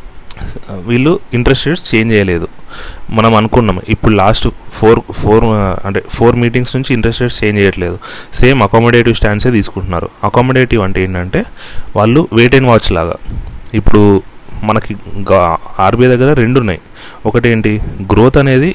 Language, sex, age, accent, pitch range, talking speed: Telugu, male, 30-49, native, 100-125 Hz, 130 wpm